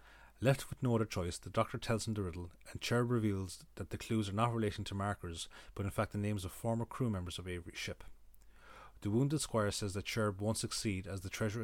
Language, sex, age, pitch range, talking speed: English, male, 30-49, 95-115 Hz, 230 wpm